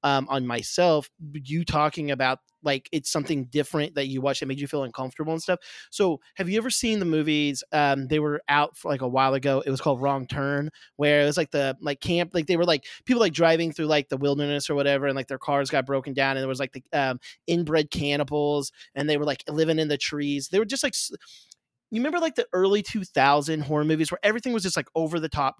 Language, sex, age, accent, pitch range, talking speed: English, male, 30-49, American, 135-165 Hz, 245 wpm